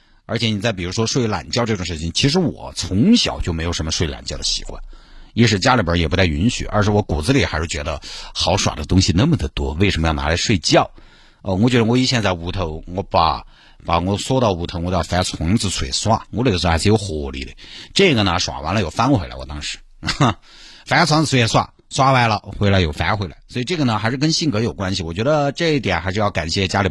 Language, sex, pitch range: Chinese, male, 85-120 Hz